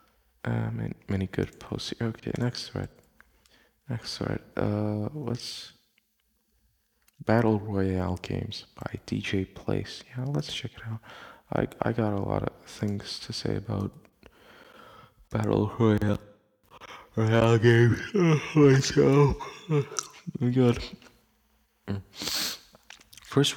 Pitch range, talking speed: 95-120 Hz, 110 wpm